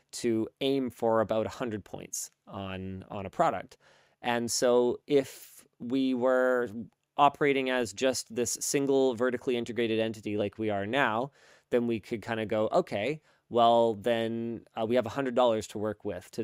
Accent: American